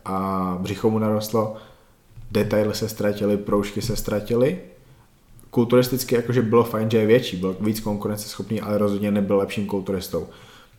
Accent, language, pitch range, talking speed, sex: native, Czech, 100-110 Hz, 140 wpm, male